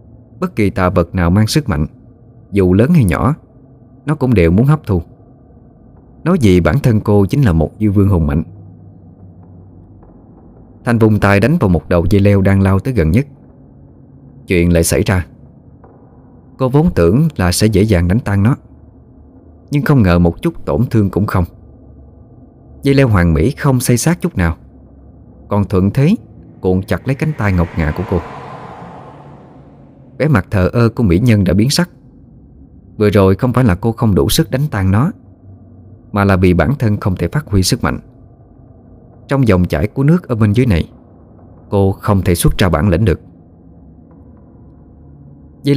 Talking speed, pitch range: 180 wpm, 90-120 Hz